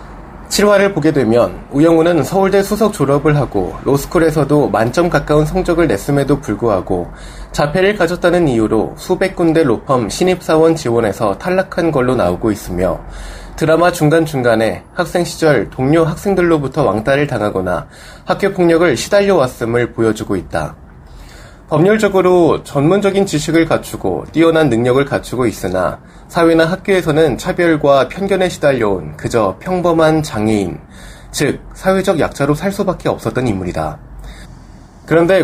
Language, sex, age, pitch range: Korean, male, 20-39, 125-175 Hz